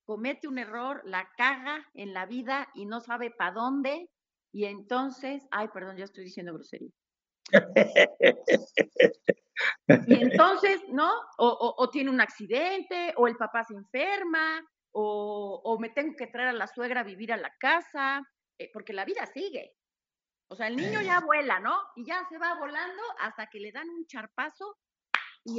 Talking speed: 170 wpm